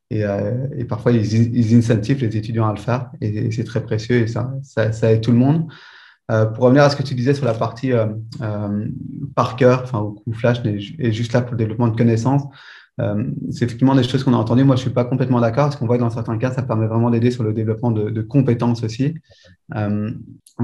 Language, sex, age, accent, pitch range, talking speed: French, male, 30-49, French, 110-125 Hz, 245 wpm